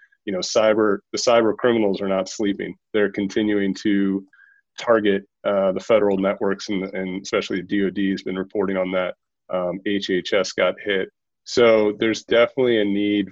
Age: 30-49